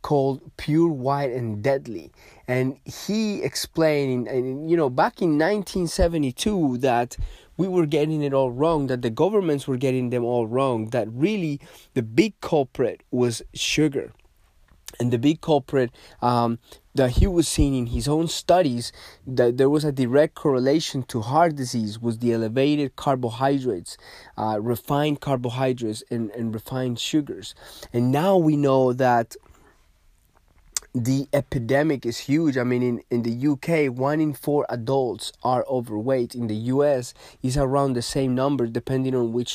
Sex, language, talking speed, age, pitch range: male, English, 150 wpm, 30-49, 120-150 Hz